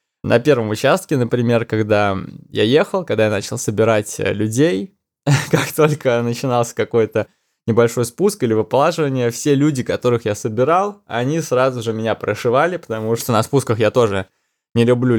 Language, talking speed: Russian, 150 wpm